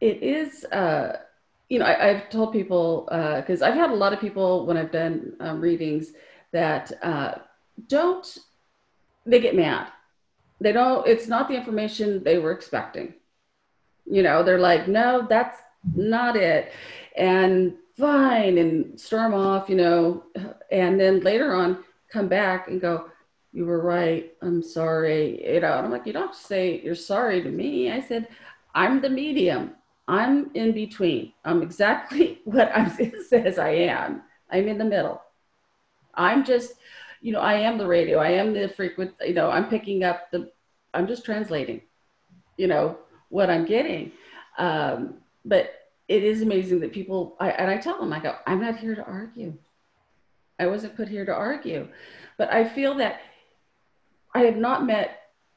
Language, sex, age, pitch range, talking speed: English, female, 30-49, 180-235 Hz, 170 wpm